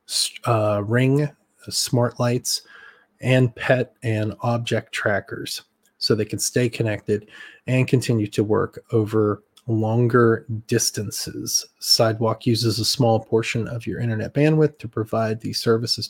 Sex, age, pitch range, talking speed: male, 30-49, 110-125 Hz, 125 wpm